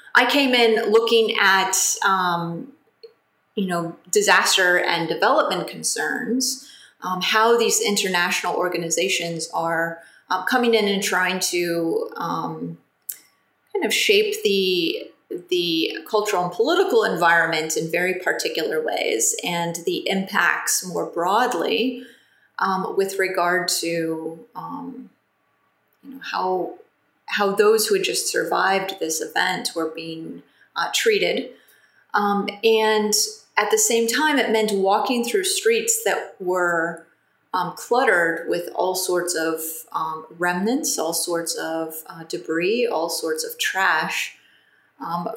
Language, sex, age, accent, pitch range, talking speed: English, female, 30-49, American, 180-285 Hz, 120 wpm